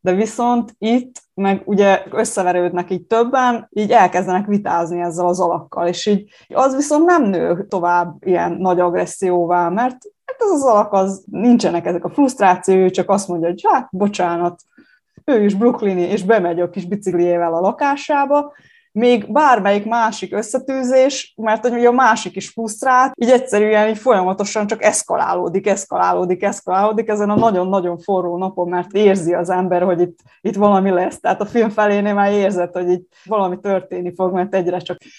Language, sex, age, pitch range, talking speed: Hungarian, female, 20-39, 180-230 Hz, 165 wpm